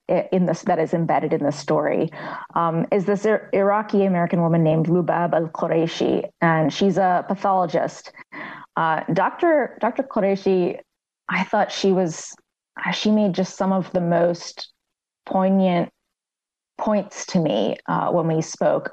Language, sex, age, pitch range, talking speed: English, female, 30-49, 165-205 Hz, 145 wpm